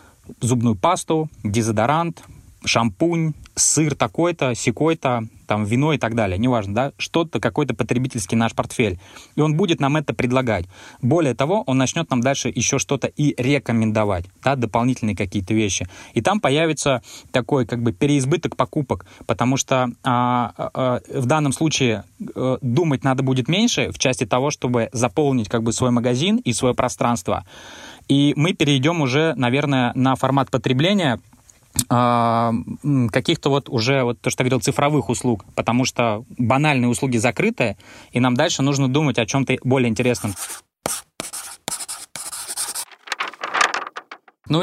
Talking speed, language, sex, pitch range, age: 140 wpm, Russian, male, 115-140 Hz, 20-39